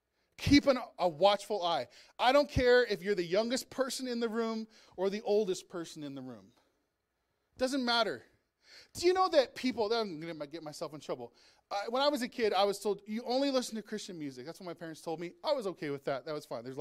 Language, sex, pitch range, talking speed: English, male, 155-235 Hz, 240 wpm